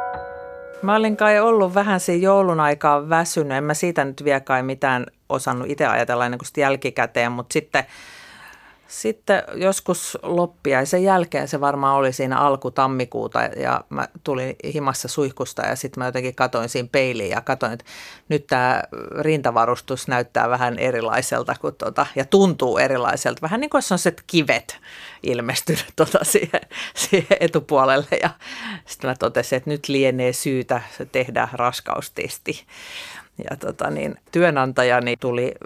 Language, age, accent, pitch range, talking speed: Finnish, 40-59, native, 130-185 Hz, 145 wpm